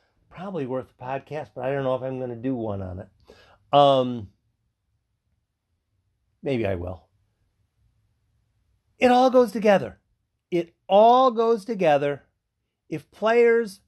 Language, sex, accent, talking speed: English, male, American, 130 wpm